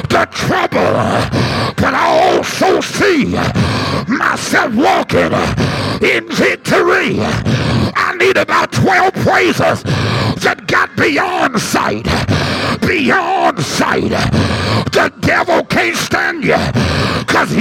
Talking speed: 90 wpm